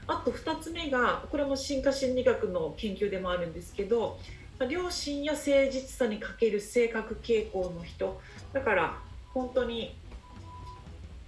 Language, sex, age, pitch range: Japanese, female, 40-59, 180-265 Hz